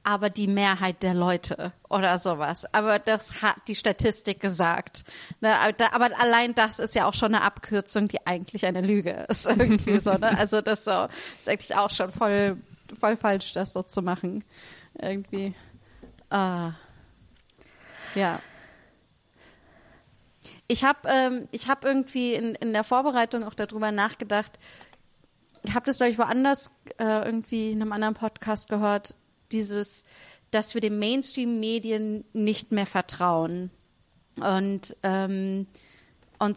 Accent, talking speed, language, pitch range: German, 140 wpm, German, 195-225 Hz